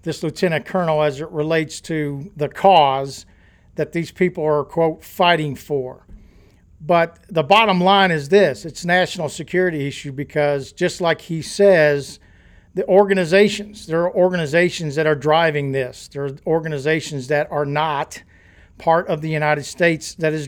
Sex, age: male, 50-69